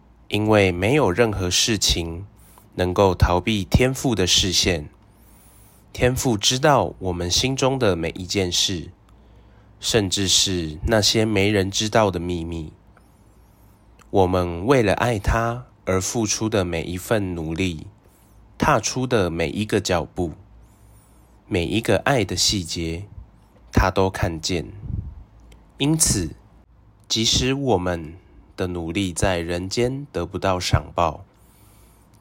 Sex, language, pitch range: male, Chinese, 90-110 Hz